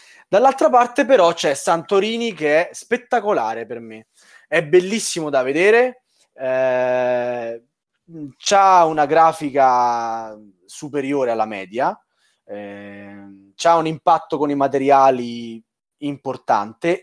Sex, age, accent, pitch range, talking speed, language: male, 20-39, native, 130-175 Hz, 100 wpm, Italian